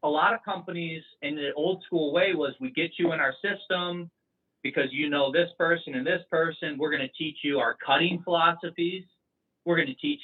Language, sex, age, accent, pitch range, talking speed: English, male, 30-49, American, 140-175 Hz, 210 wpm